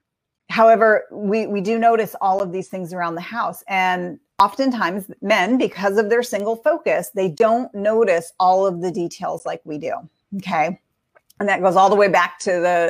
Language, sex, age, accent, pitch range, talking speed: English, female, 40-59, American, 175-215 Hz, 185 wpm